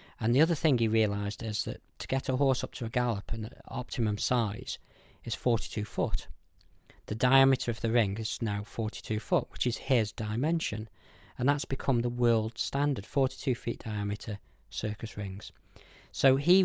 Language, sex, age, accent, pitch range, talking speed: English, male, 40-59, British, 110-130 Hz, 175 wpm